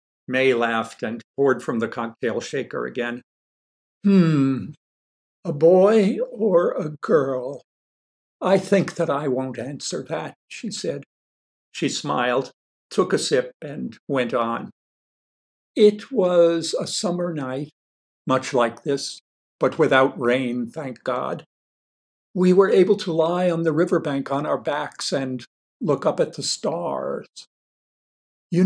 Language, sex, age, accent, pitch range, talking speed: English, male, 60-79, American, 125-180 Hz, 130 wpm